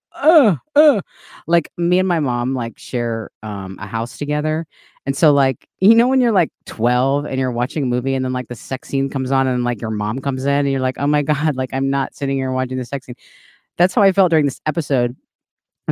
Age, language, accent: 30-49, English, American